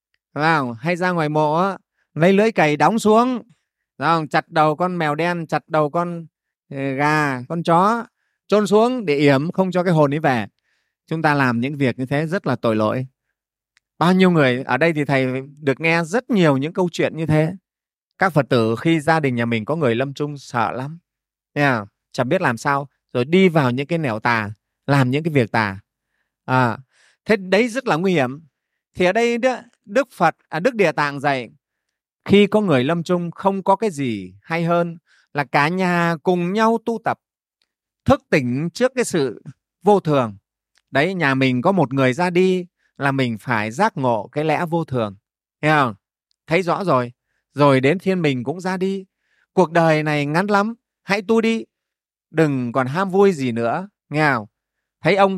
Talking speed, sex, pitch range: 190 wpm, male, 135-185 Hz